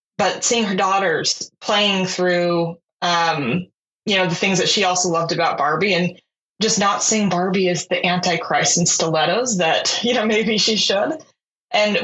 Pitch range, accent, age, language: 175-215 Hz, American, 20-39, English